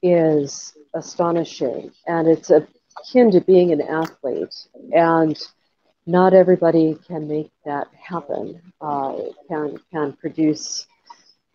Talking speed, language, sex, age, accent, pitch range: 105 wpm, English, female, 50-69, American, 155-180 Hz